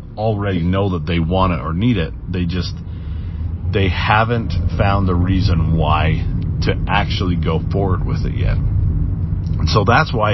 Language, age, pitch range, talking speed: English, 40-59, 85-105 Hz, 165 wpm